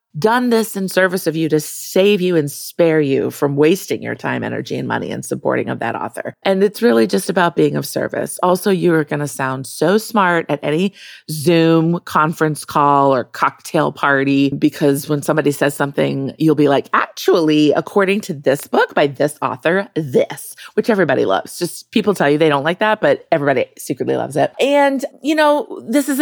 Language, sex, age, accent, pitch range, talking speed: English, female, 30-49, American, 150-215 Hz, 195 wpm